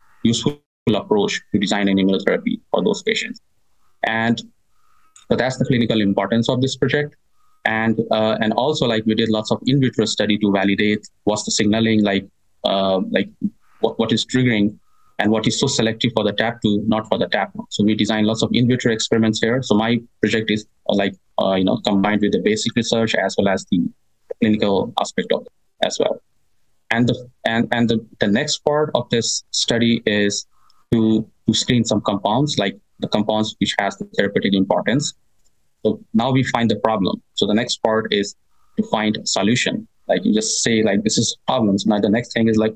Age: 20-39